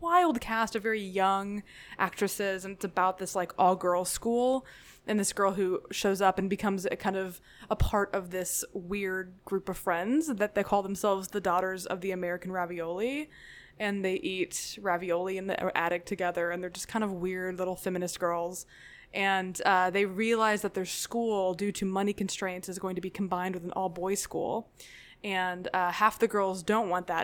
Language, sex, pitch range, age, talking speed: English, female, 185-225 Hz, 20-39, 195 wpm